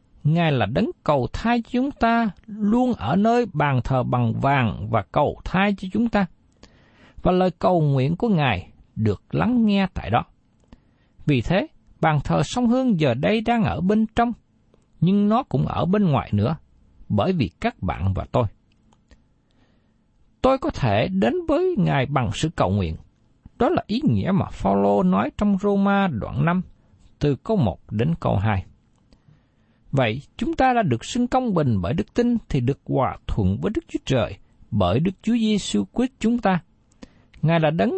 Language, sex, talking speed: Vietnamese, male, 175 wpm